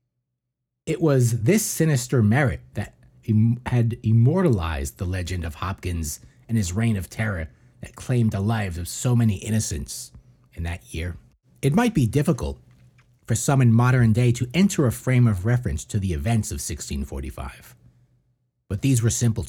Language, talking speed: English, 160 wpm